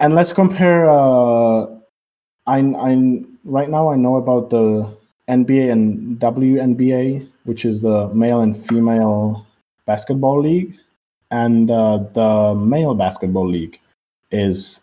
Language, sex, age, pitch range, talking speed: English, male, 20-39, 95-120 Hz, 120 wpm